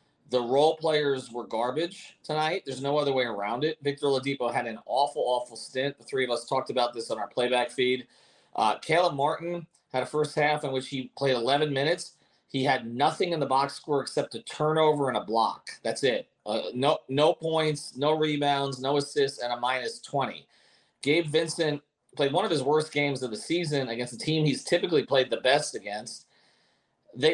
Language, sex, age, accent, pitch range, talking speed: English, male, 30-49, American, 130-170 Hz, 200 wpm